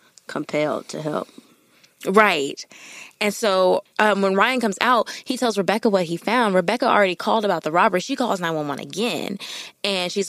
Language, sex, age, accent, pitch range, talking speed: English, female, 20-39, American, 180-240 Hz, 180 wpm